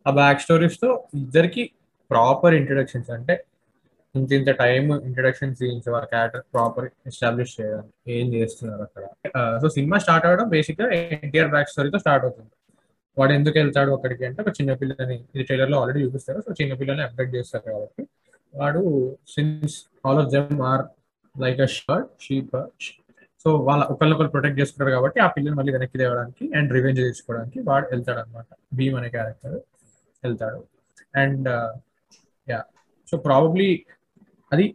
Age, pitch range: 20-39, 125-150 Hz